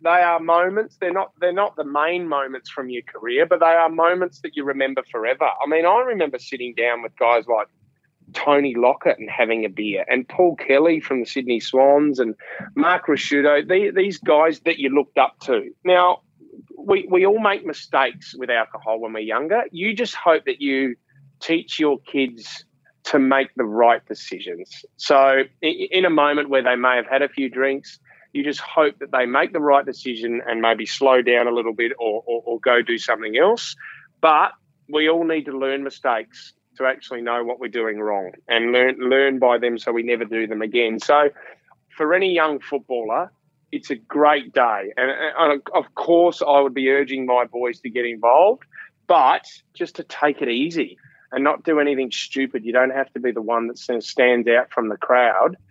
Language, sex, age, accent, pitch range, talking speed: English, male, 30-49, Australian, 120-165 Hz, 195 wpm